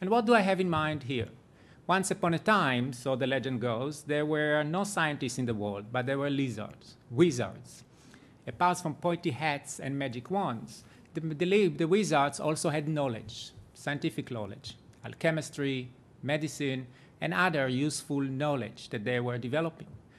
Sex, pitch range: male, 125-155 Hz